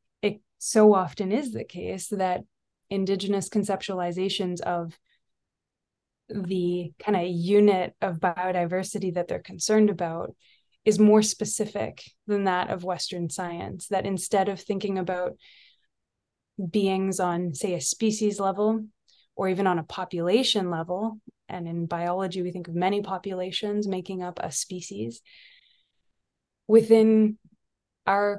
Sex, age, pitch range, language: female, 20-39, 180-210 Hz, English